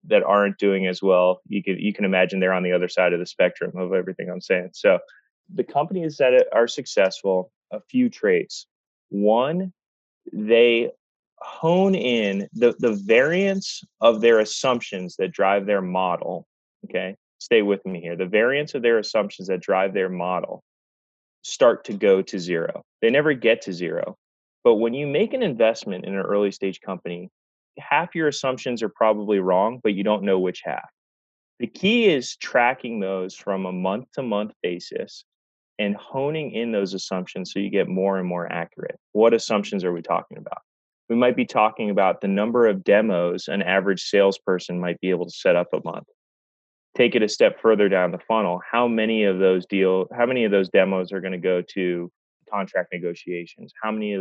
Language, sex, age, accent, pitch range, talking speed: English, male, 20-39, American, 90-115 Hz, 185 wpm